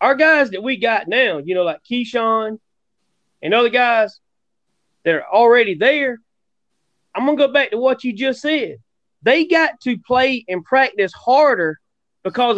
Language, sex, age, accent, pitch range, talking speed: English, male, 30-49, American, 220-280 Hz, 165 wpm